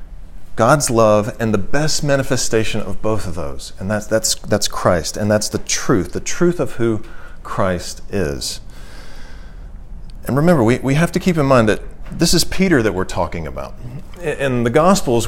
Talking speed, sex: 175 wpm, male